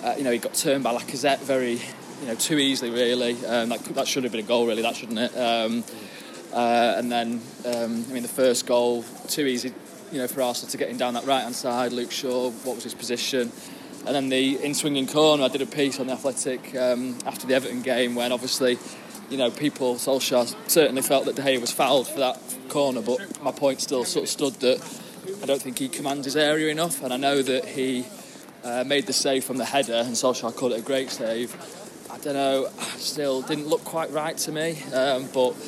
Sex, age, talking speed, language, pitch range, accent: male, 20-39, 235 wpm, English, 125-150 Hz, British